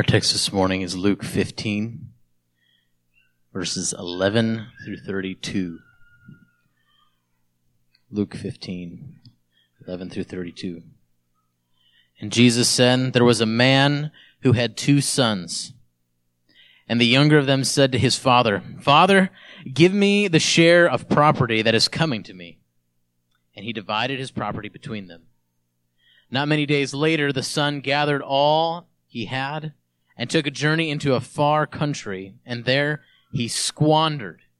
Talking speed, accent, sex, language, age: 135 wpm, American, male, English, 30-49